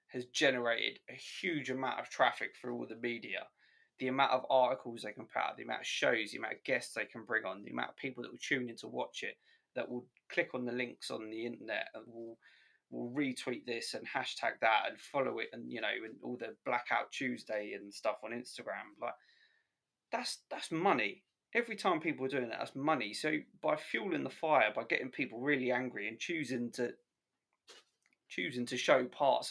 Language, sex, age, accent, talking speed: English, male, 20-39, British, 210 wpm